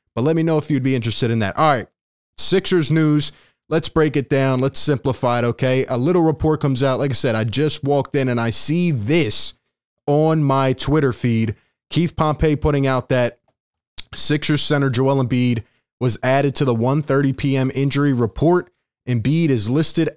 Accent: American